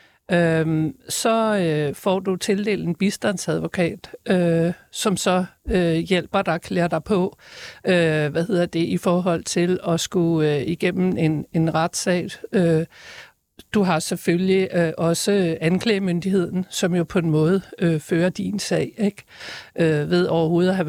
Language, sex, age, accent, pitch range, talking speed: Danish, male, 60-79, native, 170-205 Hz, 150 wpm